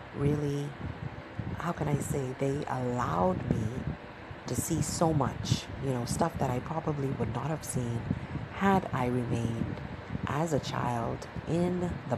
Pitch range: 120-145 Hz